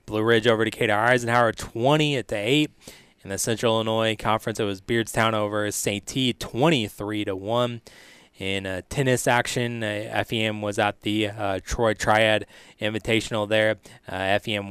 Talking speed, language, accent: 160 wpm, English, American